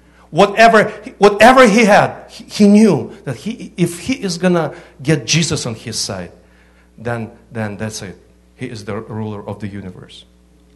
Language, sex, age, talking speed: English, male, 50-69, 160 wpm